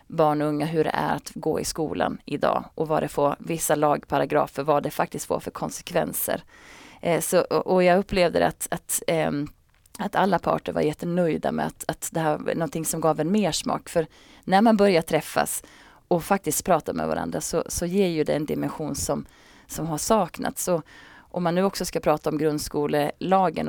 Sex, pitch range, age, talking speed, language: female, 155-200 Hz, 30-49, 195 wpm, Swedish